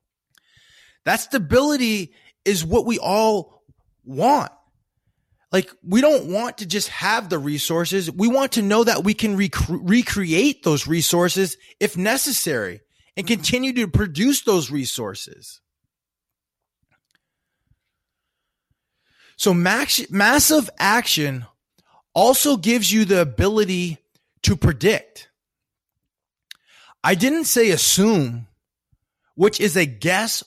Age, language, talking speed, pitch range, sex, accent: 30-49, English, 105 wpm, 165-230 Hz, male, American